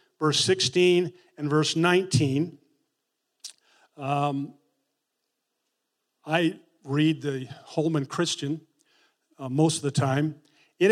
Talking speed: 95 wpm